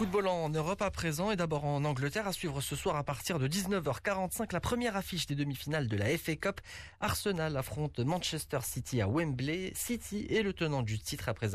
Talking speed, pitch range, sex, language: 205 wpm, 100-145 Hz, male, Arabic